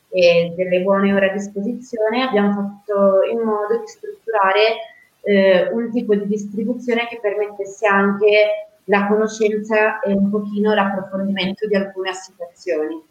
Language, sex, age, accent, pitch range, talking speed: Italian, female, 20-39, native, 175-205 Hz, 135 wpm